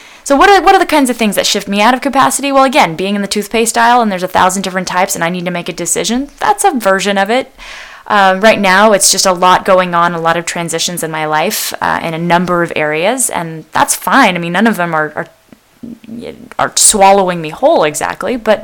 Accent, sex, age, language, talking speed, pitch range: American, female, 10-29, English, 250 wpm, 170-225 Hz